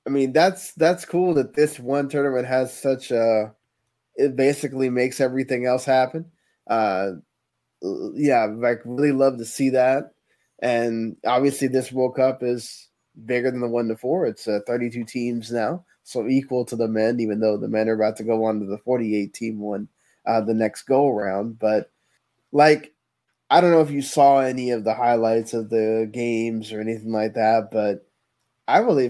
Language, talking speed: English, 190 wpm